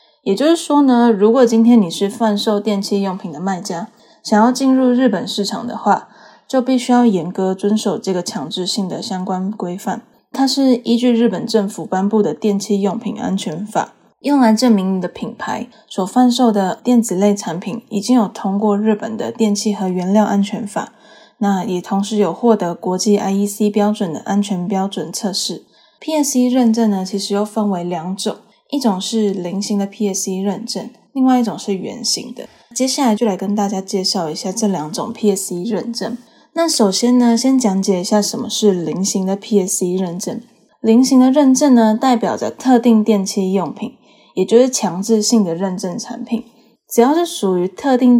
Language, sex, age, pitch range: Chinese, female, 10-29, 195-235 Hz